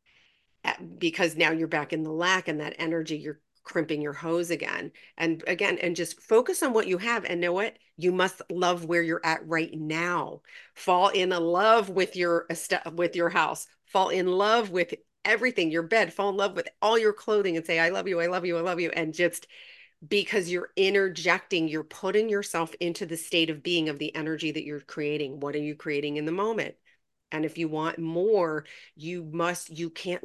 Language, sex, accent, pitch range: English, female, American, 160-185 Hz